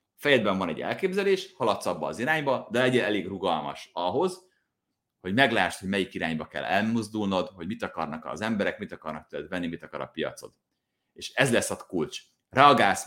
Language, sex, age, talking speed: Hungarian, male, 30-49, 180 wpm